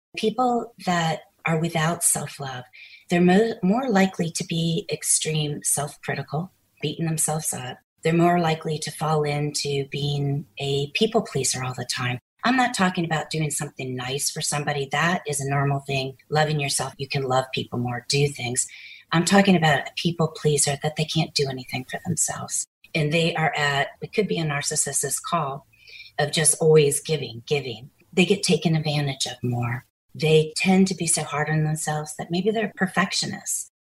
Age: 30-49